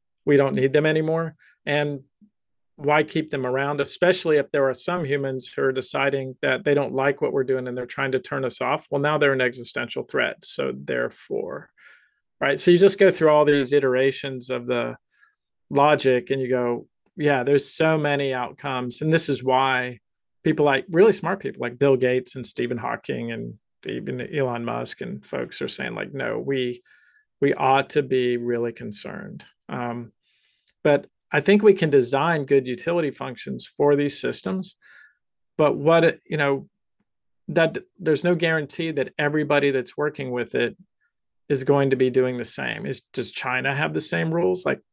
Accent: American